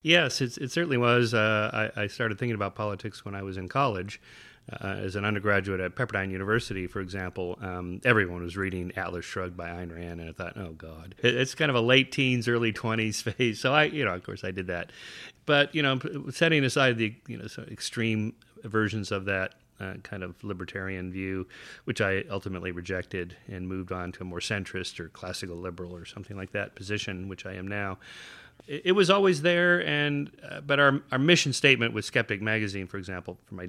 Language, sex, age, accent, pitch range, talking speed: English, male, 40-59, American, 95-120 Hz, 210 wpm